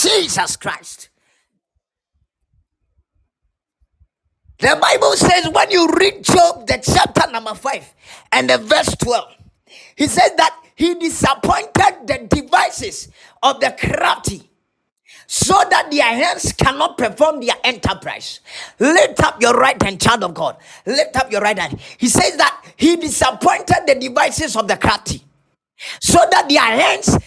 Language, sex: English, male